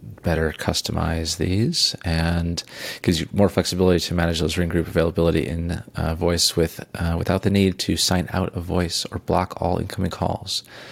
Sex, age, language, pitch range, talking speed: male, 30-49, English, 85-100 Hz, 175 wpm